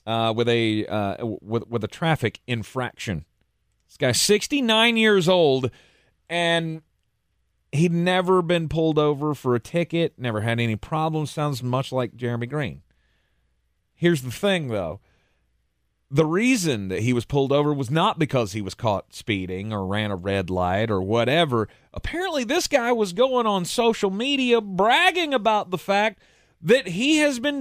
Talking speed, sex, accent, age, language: 160 wpm, male, American, 30-49, English